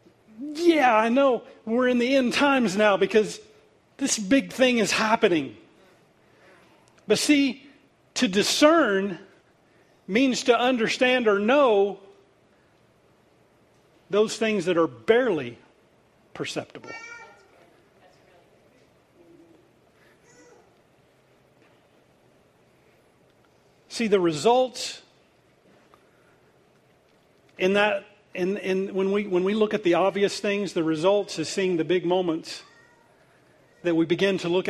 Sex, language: male, English